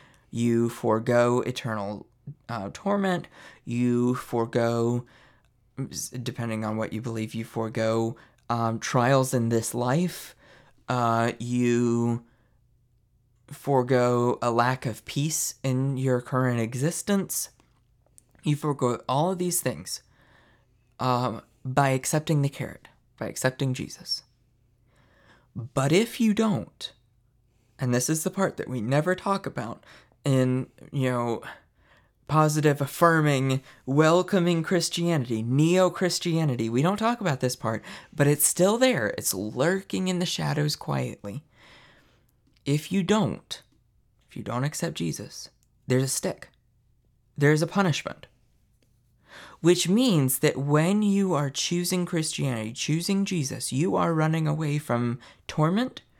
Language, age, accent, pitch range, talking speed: English, 20-39, American, 120-155 Hz, 120 wpm